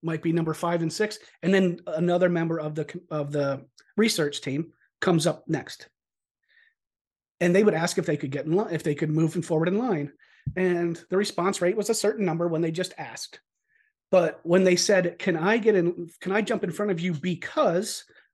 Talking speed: 215 wpm